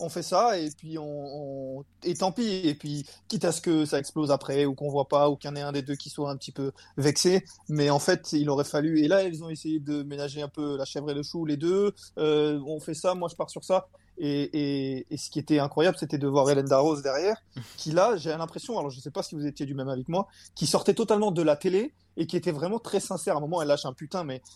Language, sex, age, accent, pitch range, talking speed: French, male, 30-49, French, 145-180 Hz, 285 wpm